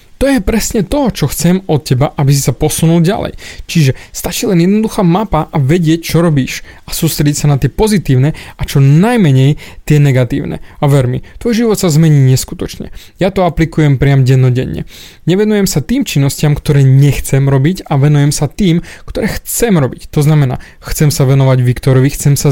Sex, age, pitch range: male, 20-39, 135-170 Hz